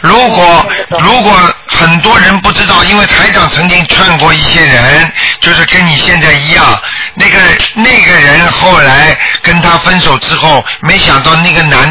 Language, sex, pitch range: Chinese, male, 150-185 Hz